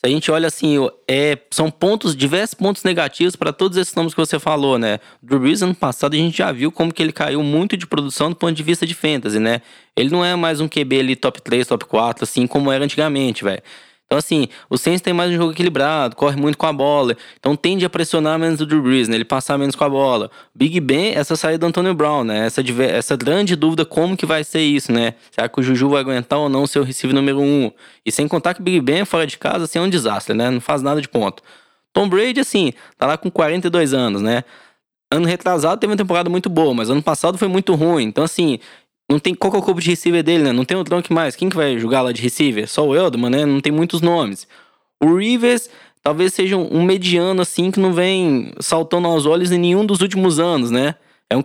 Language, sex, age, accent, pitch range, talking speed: Portuguese, male, 10-29, Brazilian, 140-175 Hz, 245 wpm